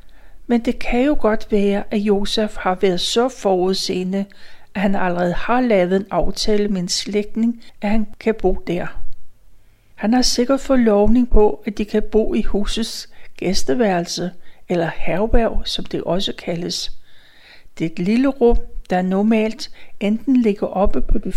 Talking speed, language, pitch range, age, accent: 155 wpm, Danish, 190-235 Hz, 60-79, native